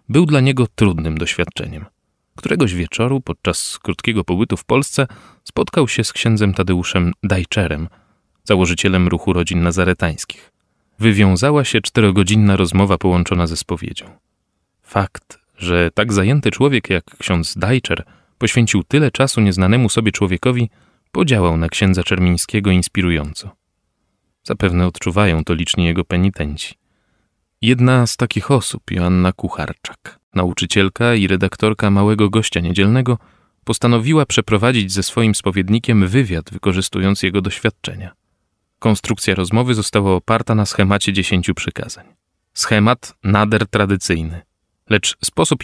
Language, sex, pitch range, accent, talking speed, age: Polish, male, 90-115 Hz, native, 115 wpm, 30-49